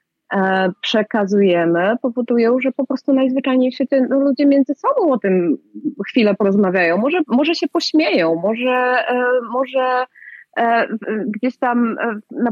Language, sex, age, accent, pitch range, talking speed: Polish, female, 30-49, native, 185-255 Hz, 120 wpm